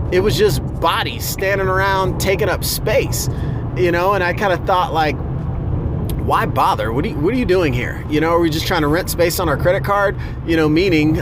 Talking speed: 230 wpm